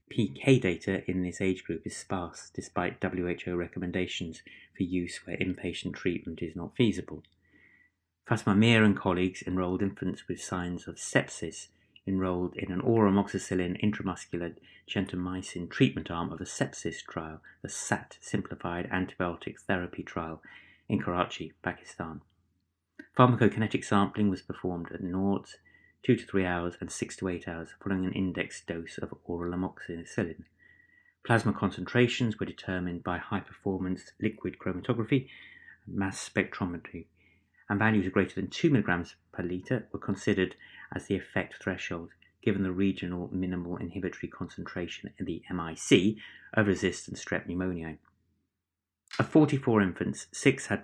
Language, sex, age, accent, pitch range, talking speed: English, male, 30-49, British, 90-100 Hz, 135 wpm